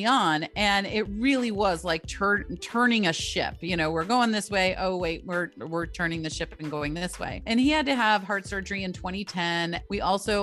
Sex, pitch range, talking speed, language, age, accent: female, 175-215 Hz, 220 wpm, English, 30-49, American